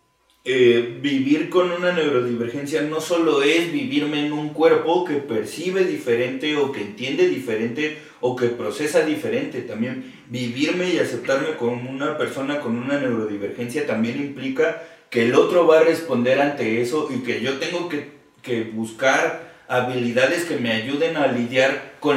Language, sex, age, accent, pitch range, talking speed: Spanish, male, 30-49, Mexican, 120-155 Hz, 155 wpm